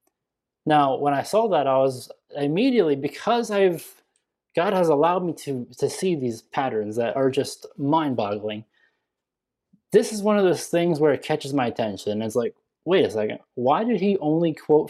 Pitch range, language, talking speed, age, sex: 135-185 Hz, English, 175 wpm, 20-39, male